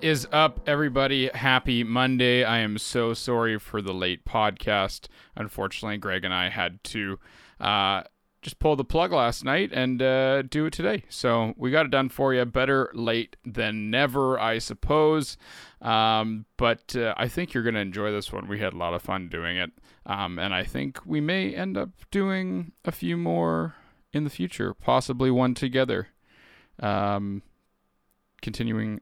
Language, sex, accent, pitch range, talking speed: English, male, American, 105-130 Hz, 170 wpm